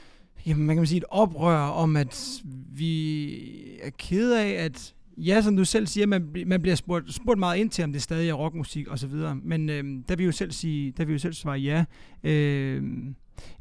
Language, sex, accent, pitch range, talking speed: Danish, male, native, 145-175 Hz, 210 wpm